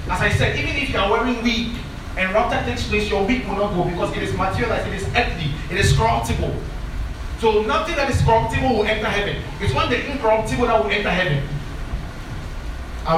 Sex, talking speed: male, 210 wpm